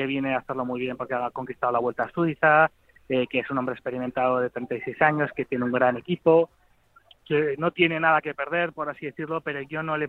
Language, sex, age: Spanish, male, 20-39